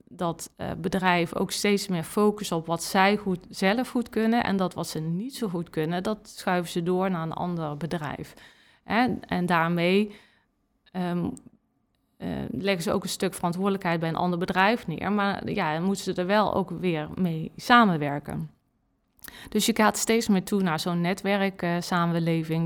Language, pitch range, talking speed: Dutch, 170-210 Hz, 165 wpm